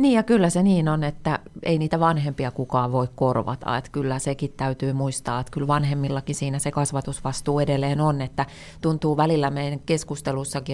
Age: 30-49